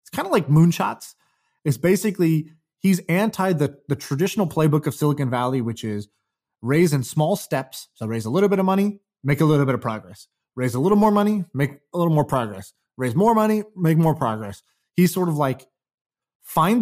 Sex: male